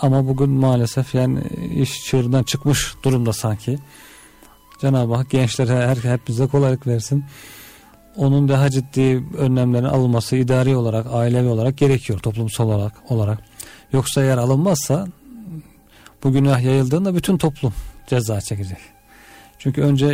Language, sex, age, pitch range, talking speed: Turkish, male, 40-59, 115-140 Hz, 125 wpm